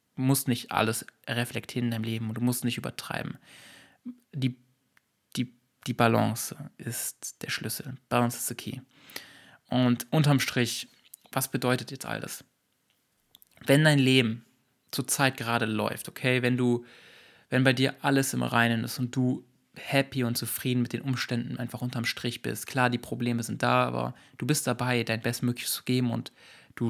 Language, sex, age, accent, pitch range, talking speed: German, male, 20-39, German, 120-130 Hz, 165 wpm